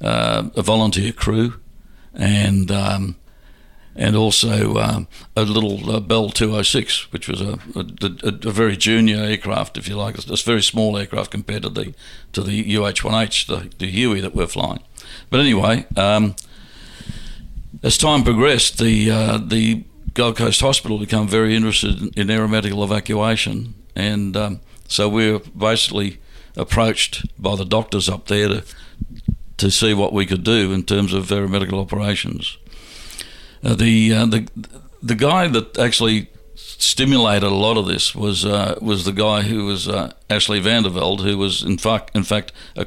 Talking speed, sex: 165 wpm, male